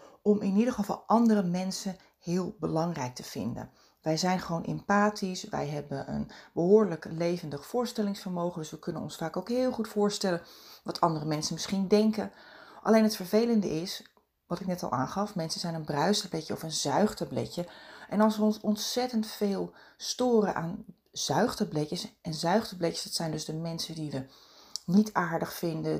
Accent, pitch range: Dutch, 170-205 Hz